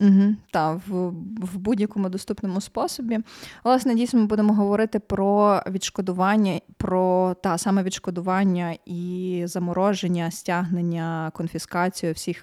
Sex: female